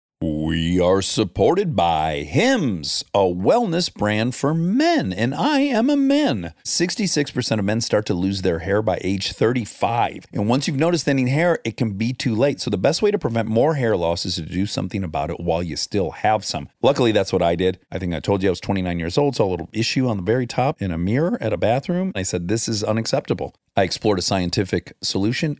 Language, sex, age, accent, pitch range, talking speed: English, male, 40-59, American, 100-145 Hz, 225 wpm